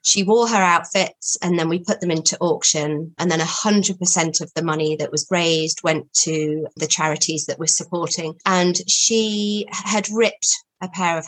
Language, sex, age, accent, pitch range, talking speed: English, female, 30-49, British, 160-200 Hz, 180 wpm